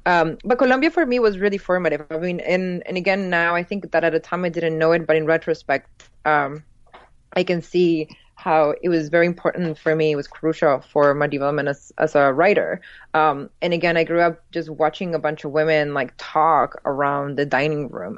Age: 20-39